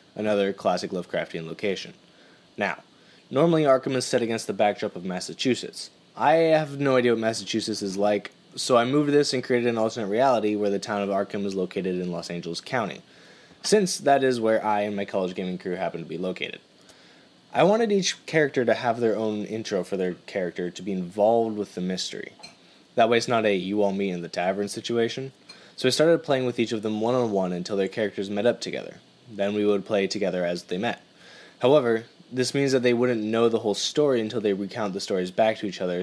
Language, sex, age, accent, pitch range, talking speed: English, male, 20-39, American, 100-125 Hz, 205 wpm